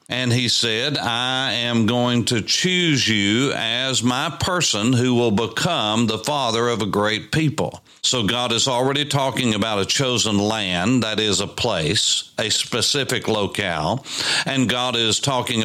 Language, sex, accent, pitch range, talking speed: English, male, American, 110-135 Hz, 155 wpm